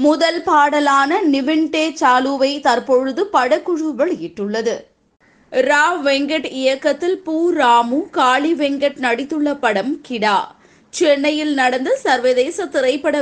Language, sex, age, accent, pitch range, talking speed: Tamil, female, 20-39, native, 255-315 Hz, 95 wpm